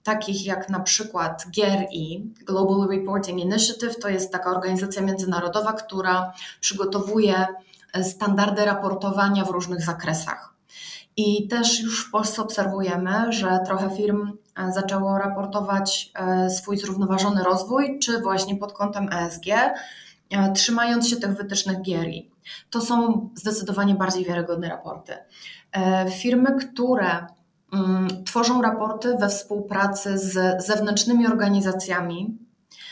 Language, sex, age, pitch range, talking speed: Polish, female, 20-39, 185-215 Hz, 110 wpm